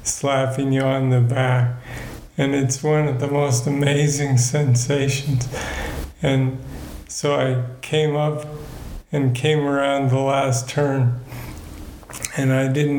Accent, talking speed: American, 125 wpm